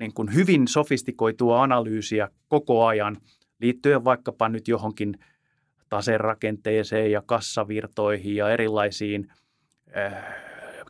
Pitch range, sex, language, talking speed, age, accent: 110-130 Hz, male, Finnish, 95 wpm, 30-49, native